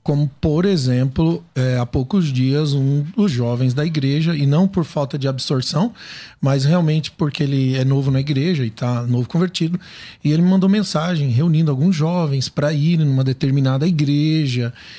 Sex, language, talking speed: male, Portuguese, 170 wpm